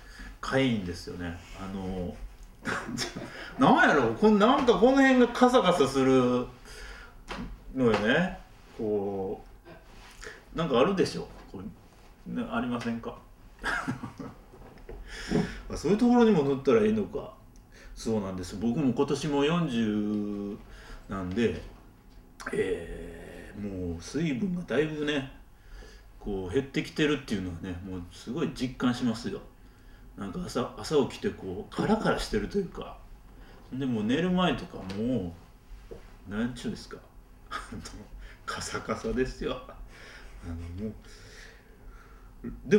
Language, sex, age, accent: Japanese, male, 40-59, native